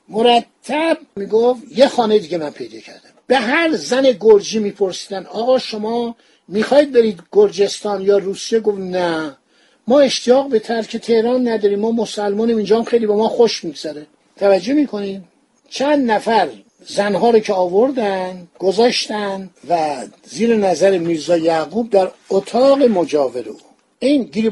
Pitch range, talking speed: 185-240 Hz, 135 wpm